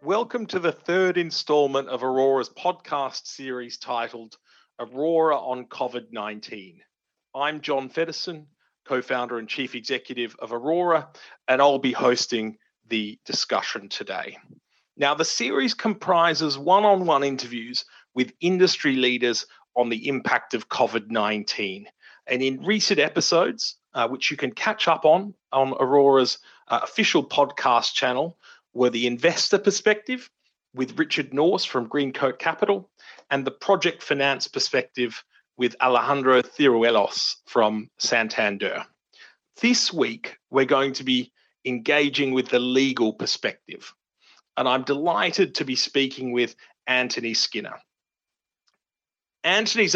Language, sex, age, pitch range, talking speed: English, male, 40-59, 125-175 Hz, 120 wpm